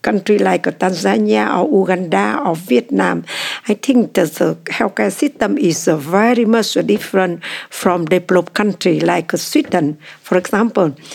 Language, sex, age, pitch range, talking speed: Swedish, female, 60-79, 180-235 Hz, 125 wpm